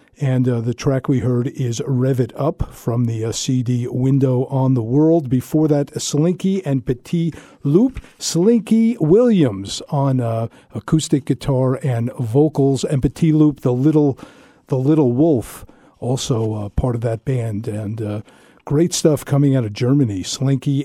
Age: 50-69